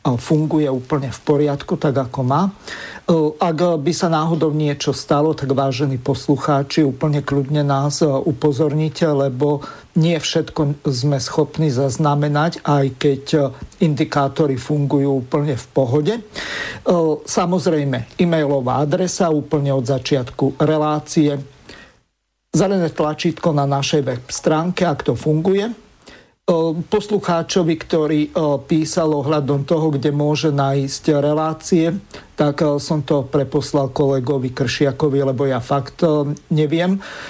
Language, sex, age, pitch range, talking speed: Slovak, male, 50-69, 140-165 Hz, 110 wpm